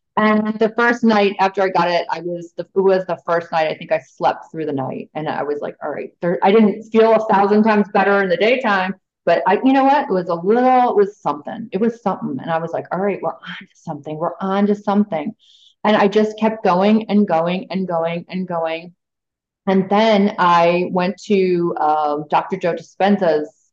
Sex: female